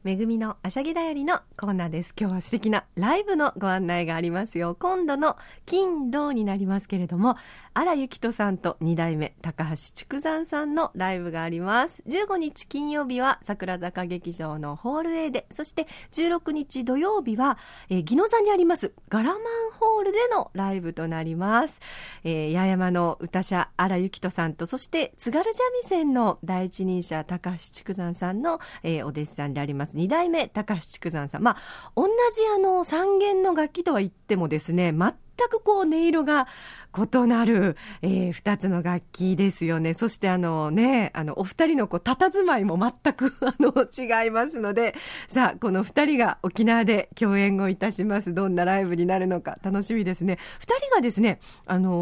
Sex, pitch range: female, 180-300 Hz